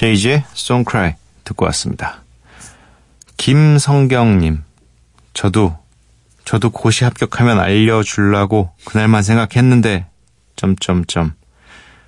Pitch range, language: 80-110 Hz, Korean